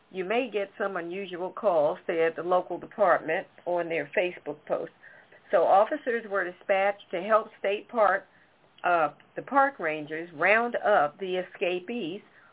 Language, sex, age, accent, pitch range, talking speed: English, female, 50-69, American, 175-220 Hz, 145 wpm